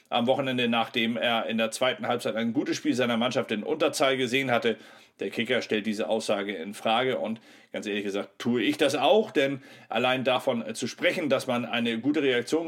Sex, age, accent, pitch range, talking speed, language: male, 40-59, German, 110-140 Hz, 200 wpm, German